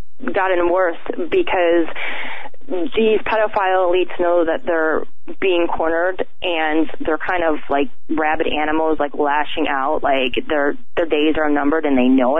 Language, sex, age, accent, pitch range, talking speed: English, female, 20-39, American, 155-195 Hz, 145 wpm